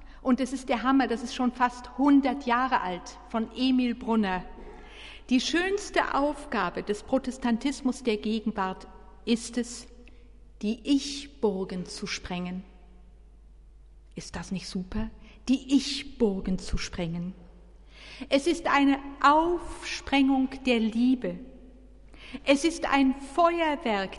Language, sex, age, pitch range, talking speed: German, female, 50-69, 205-275 Hz, 115 wpm